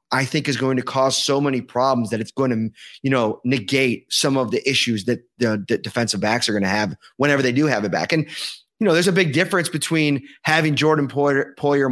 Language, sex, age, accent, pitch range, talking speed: English, male, 30-49, American, 125-160 Hz, 235 wpm